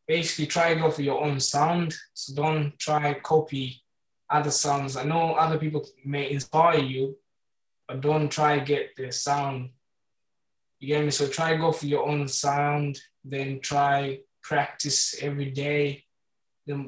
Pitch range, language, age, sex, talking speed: 140-155 Hz, English, 20-39, male, 150 wpm